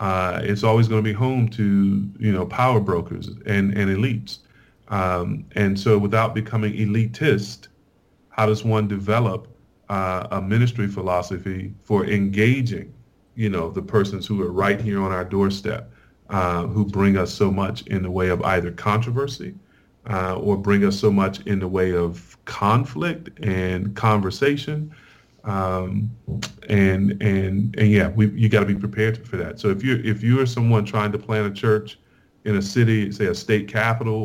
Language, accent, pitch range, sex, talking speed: English, American, 100-110 Hz, male, 175 wpm